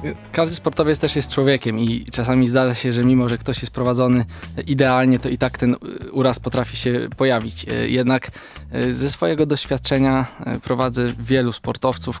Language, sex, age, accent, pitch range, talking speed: Polish, male, 20-39, native, 120-130 Hz, 150 wpm